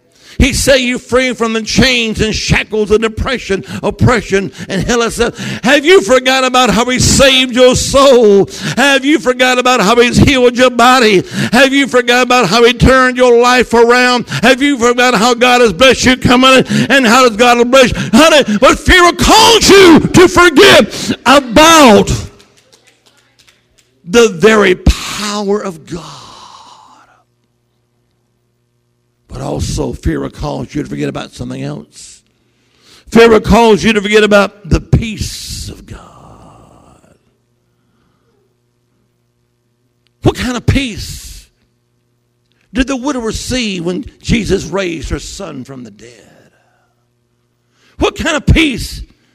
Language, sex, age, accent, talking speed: English, male, 60-79, American, 135 wpm